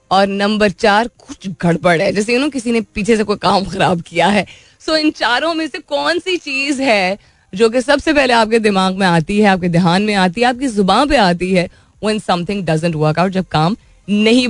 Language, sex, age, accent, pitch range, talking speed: Hindi, female, 20-39, native, 175-230 Hz, 215 wpm